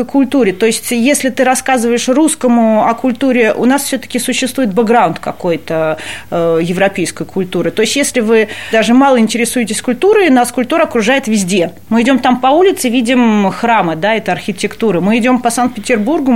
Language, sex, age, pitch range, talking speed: Russian, female, 30-49, 200-255 Hz, 160 wpm